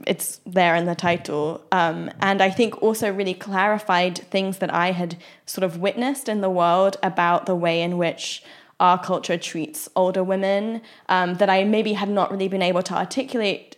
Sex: female